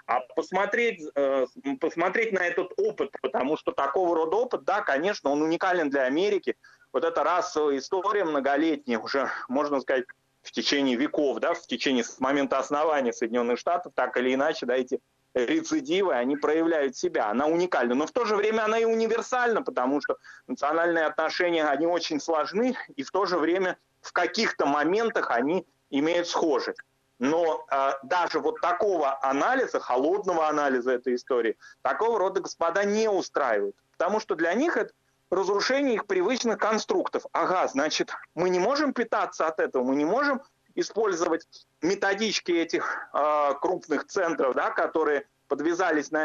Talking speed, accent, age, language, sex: 150 wpm, native, 30-49, Russian, male